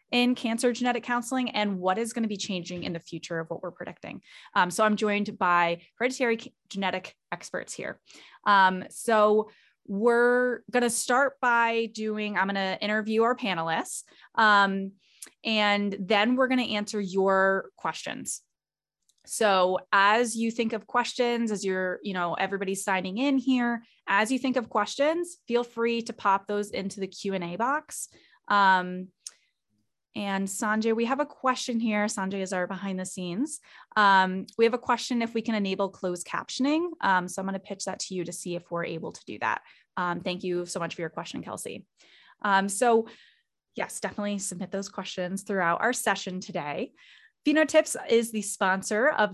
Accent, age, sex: American, 20-39, female